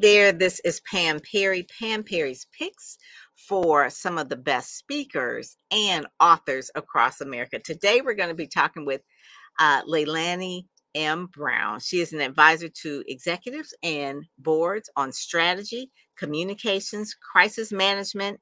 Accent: American